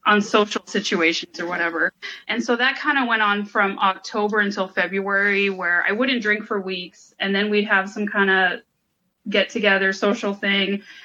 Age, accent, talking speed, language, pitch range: 20-39, American, 180 wpm, English, 195-235 Hz